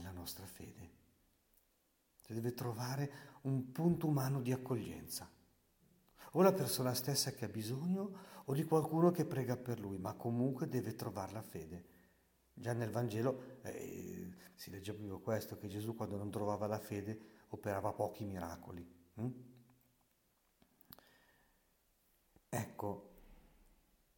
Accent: native